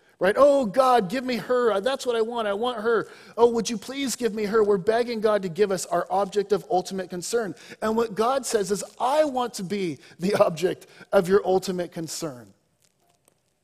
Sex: male